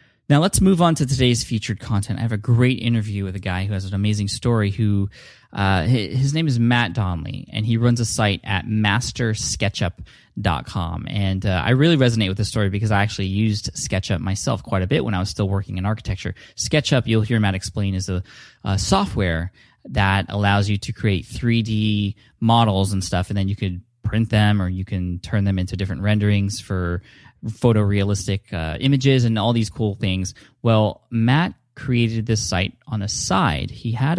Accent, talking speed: American, 195 wpm